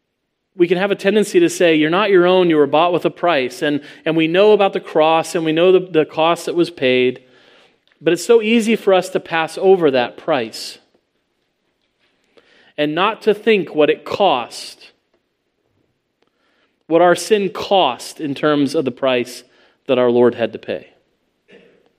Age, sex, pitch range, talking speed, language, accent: 40-59, male, 125-165 Hz, 180 wpm, English, American